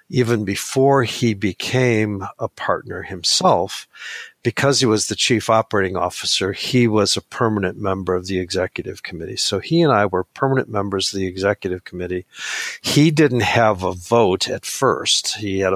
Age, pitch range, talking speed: 50-69, 95-120 Hz, 165 wpm